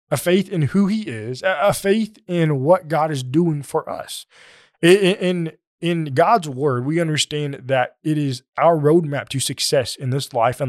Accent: American